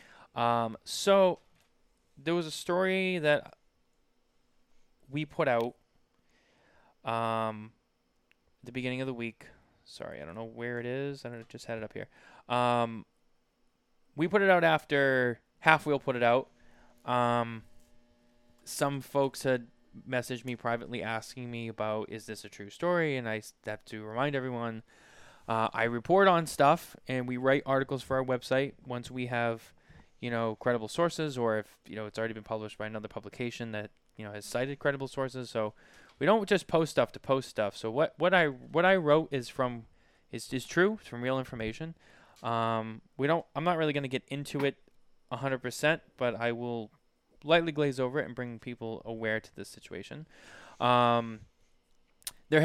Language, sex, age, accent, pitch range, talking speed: English, male, 20-39, American, 115-145 Hz, 175 wpm